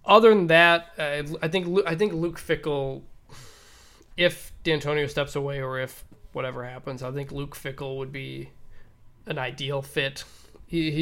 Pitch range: 125-150 Hz